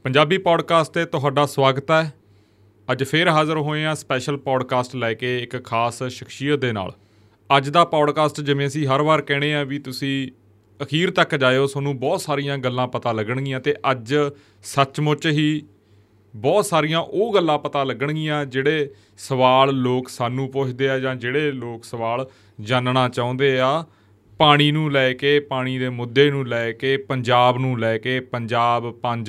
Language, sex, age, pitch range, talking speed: Punjabi, male, 30-49, 120-145 Hz, 140 wpm